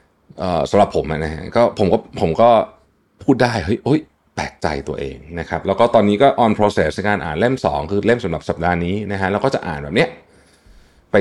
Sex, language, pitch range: male, Thai, 80-105 Hz